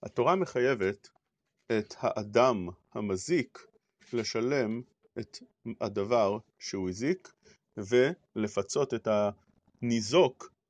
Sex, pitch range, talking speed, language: male, 110-150 Hz, 65 wpm, English